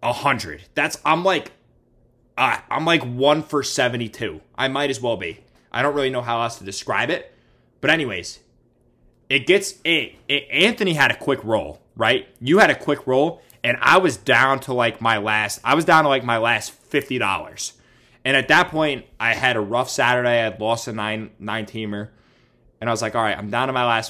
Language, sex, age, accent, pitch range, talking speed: English, male, 20-39, American, 110-155 Hz, 205 wpm